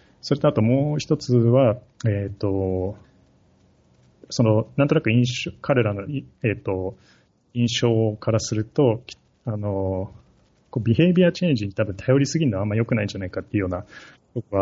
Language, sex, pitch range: Japanese, male, 100-125 Hz